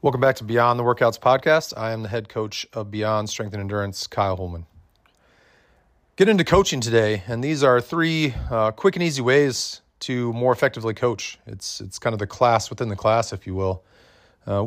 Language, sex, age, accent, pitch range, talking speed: English, male, 30-49, American, 100-120 Hz, 200 wpm